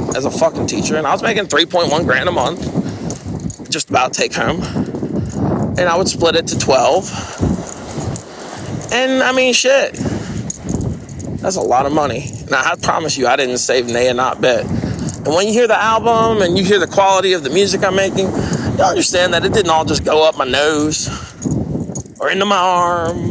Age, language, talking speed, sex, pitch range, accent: 30-49, English, 190 wpm, male, 150-200 Hz, American